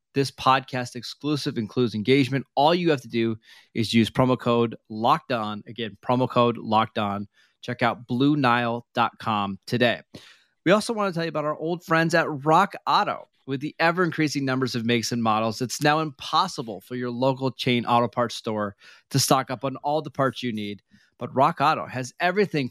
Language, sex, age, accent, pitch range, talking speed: English, male, 30-49, American, 115-145 Hz, 180 wpm